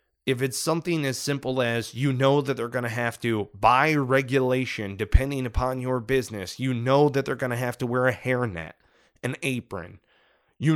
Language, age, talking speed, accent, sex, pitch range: English, 30-49, 190 wpm, American, male, 115-135 Hz